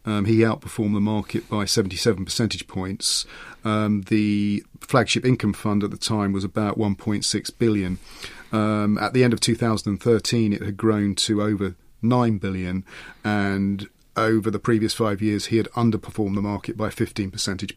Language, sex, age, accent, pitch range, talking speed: English, male, 40-59, British, 100-115 Hz, 160 wpm